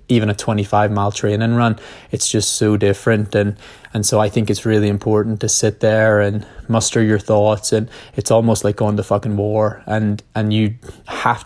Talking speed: 195 wpm